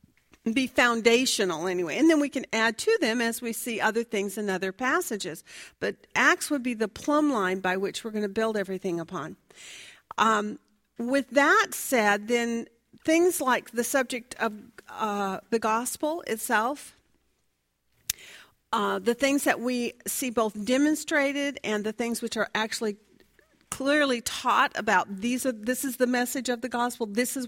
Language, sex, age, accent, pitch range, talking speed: English, female, 50-69, American, 220-265 Hz, 165 wpm